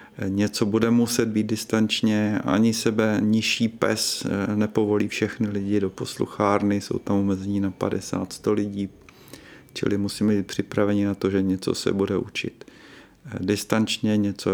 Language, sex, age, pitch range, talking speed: Czech, male, 40-59, 100-110 Hz, 135 wpm